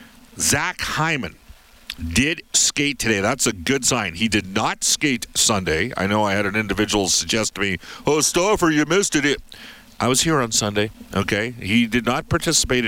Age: 50-69